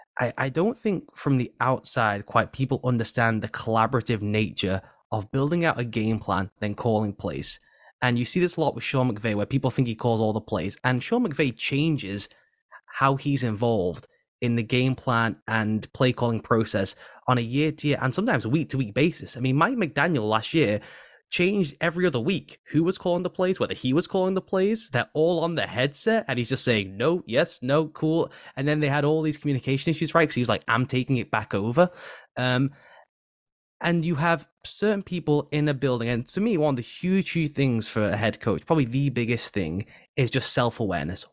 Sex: male